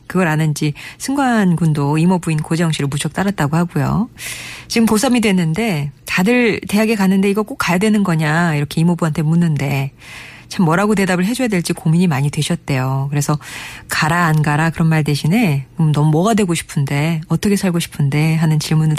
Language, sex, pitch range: Korean, female, 155-195 Hz